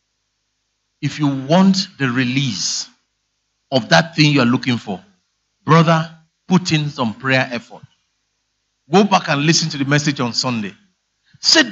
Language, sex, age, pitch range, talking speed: English, male, 50-69, 150-230 Hz, 145 wpm